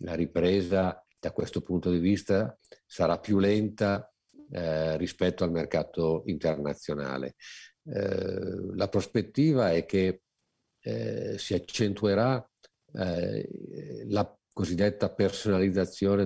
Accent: native